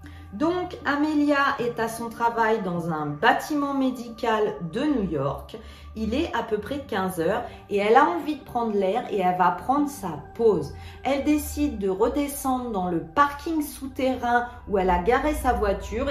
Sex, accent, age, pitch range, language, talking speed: female, French, 40-59, 175-265 Hz, French, 170 wpm